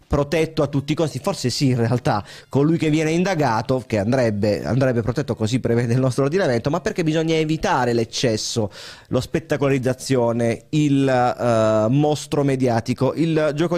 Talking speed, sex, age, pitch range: 150 wpm, male, 30-49, 130-165 Hz